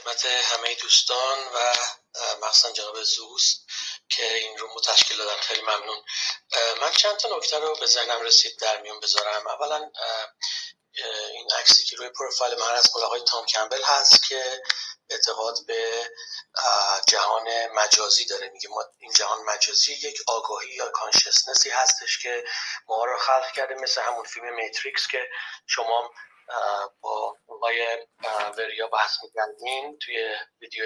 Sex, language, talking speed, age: male, Persian, 135 wpm, 30-49